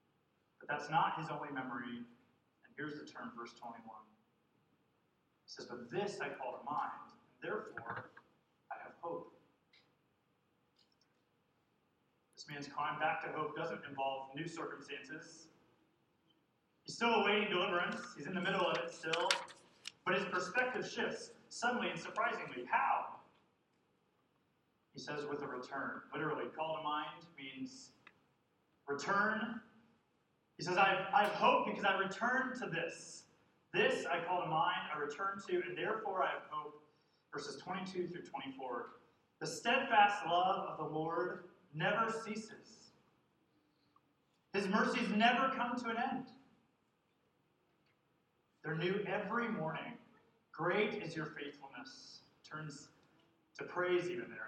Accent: American